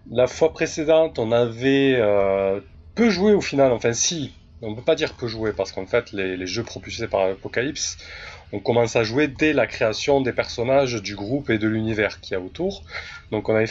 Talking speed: 210 wpm